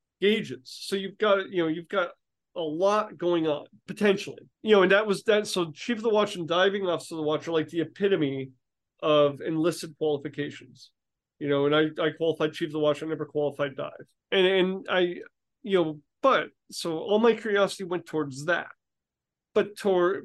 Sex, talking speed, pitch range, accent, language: male, 195 wpm, 145-195 Hz, American, English